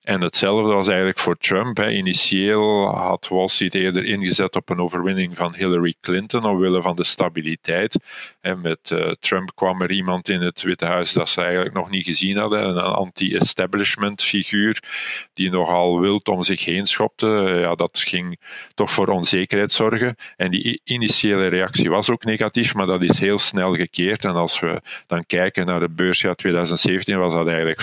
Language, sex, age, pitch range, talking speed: Dutch, male, 50-69, 90-95 Hz, 175 wpm